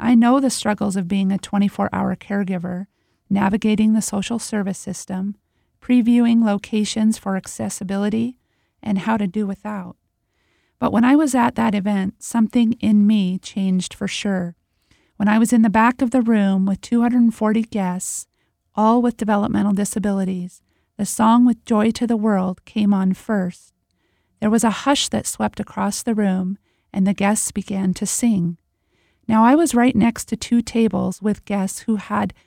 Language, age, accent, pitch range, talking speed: English, 40-59, American, 195-225 Hz, 165 wpm